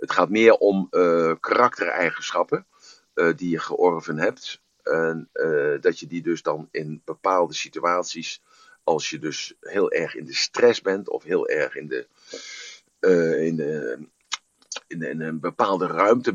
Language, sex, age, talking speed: Dutch, male, 50-69, 140 wpm